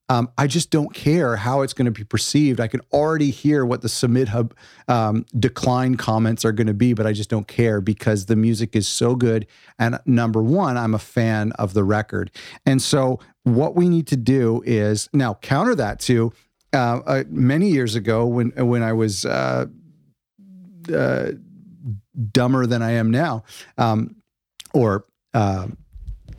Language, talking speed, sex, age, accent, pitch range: English, 170 wpm, male, 40-59, American, 110-130 Hz